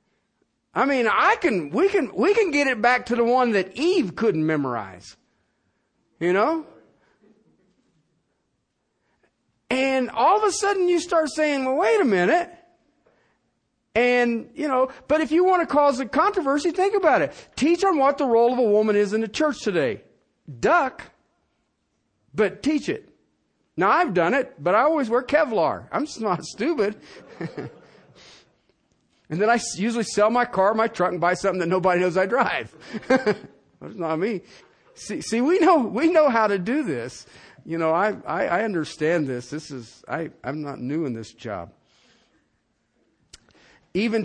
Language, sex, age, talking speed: English, male, 50-69, 165 wpm